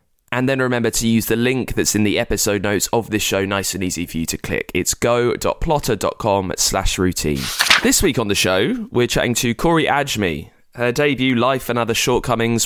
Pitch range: 90-115 Hz